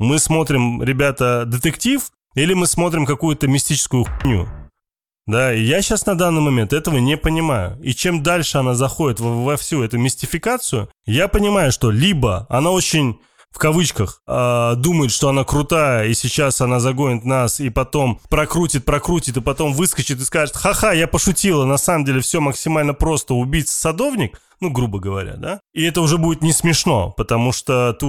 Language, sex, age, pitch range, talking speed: Russian, male, 20-39, 120-160 Hz, 170 wpm